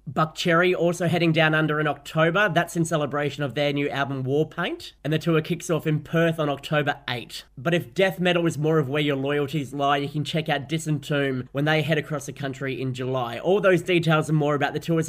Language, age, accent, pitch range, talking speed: English, 30-49, Australian, 135-160 Hz, 240 wpm